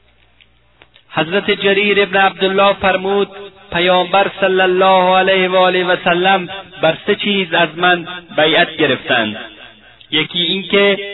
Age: 30-49